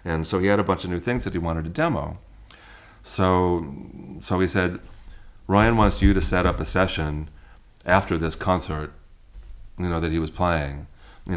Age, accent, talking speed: 40-59, American, 190 wpm